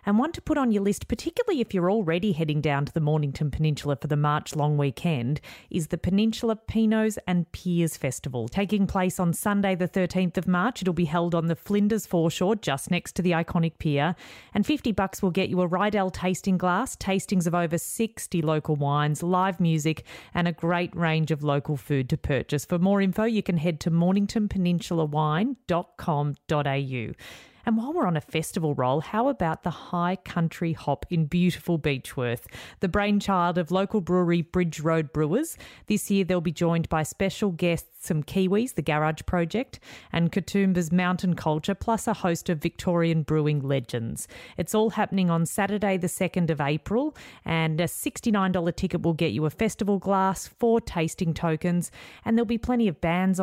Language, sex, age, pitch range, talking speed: English, female, 40-59, 160-200 Hz, 180 wpm